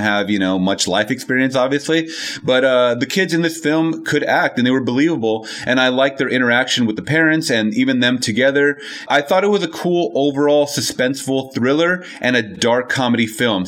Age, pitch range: 30-49, 120-145 Hz